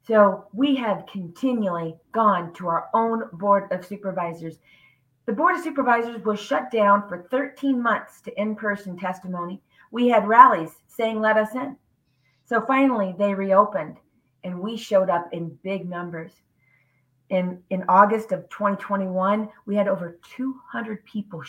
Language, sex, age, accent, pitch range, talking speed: English, female, 40-59, American, 180-220 Hz, 145 wpm